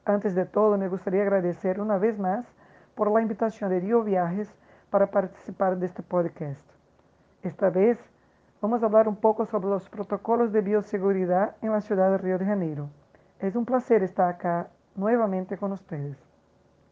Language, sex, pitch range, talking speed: Portuguese, female, 185-210 Hz, 165 wpm